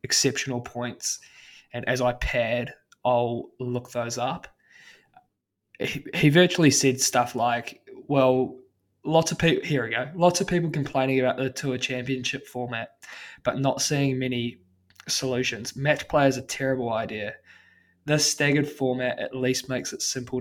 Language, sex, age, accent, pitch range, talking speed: English, male, 20-39, Australian, 120-140 Hz, 150 wpm